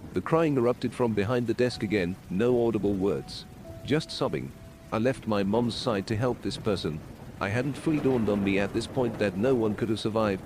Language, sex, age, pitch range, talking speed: English, male, 40-59, 100-125 Hz, 210 wpm